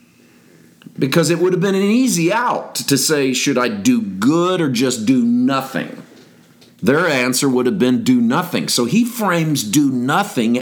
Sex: male